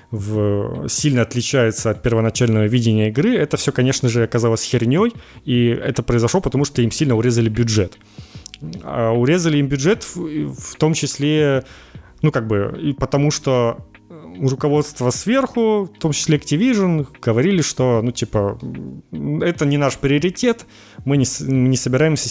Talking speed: 145 wpm